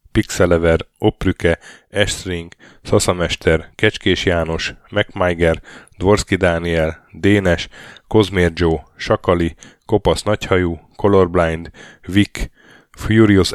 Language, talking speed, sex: Hungarian, 75 wpm, male